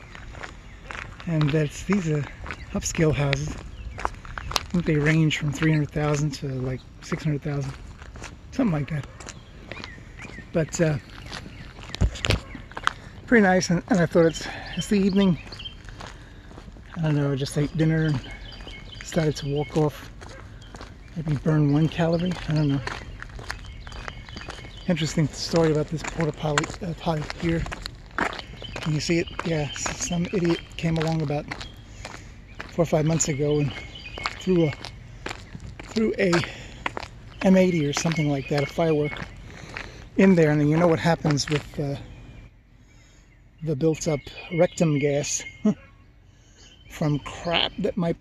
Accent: American